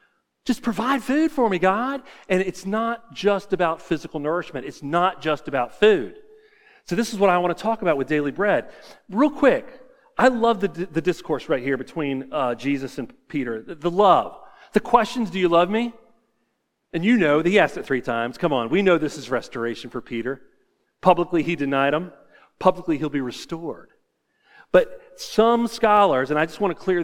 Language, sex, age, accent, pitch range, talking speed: English, male, 40-59, American, 155-215 Hz, 195 wpm